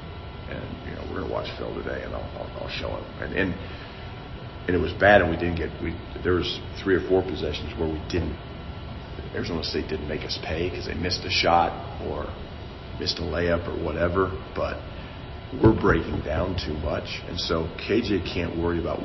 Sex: male